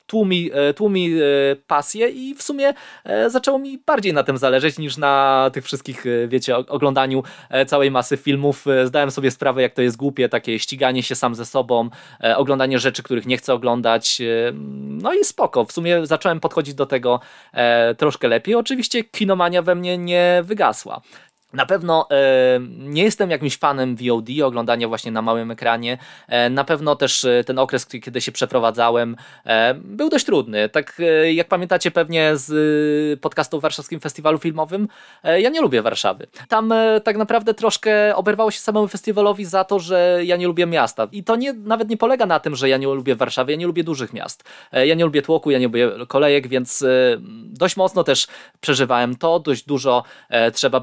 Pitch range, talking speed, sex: 130-185 Hz, 170 wpm, male